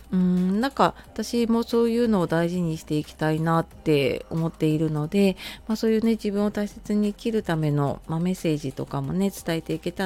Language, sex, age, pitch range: Japanese, female, 30-49, 155-205 Hz